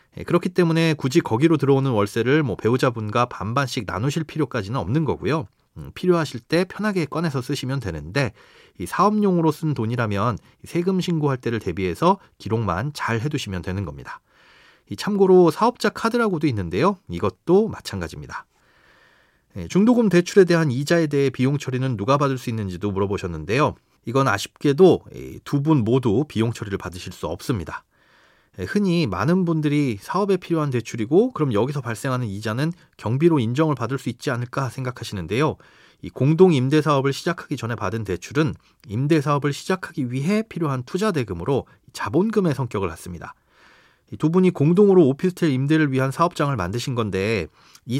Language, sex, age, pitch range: Korean, male, 40-59, 115-170 Hz